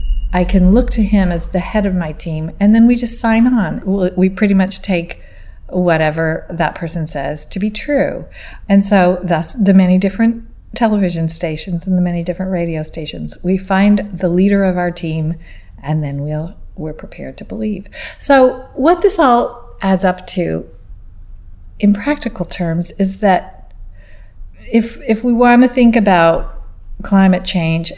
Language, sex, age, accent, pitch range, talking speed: English, female, 40-59, American, 165-205 Hz, 165 wpm